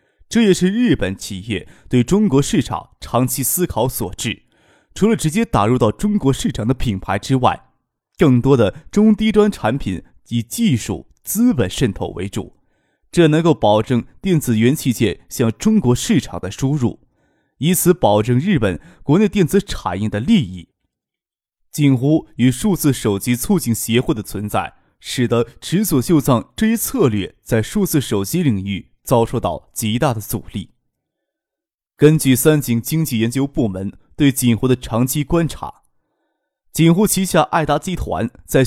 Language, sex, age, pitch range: Chinese, male, 20-39, 115-165 Hz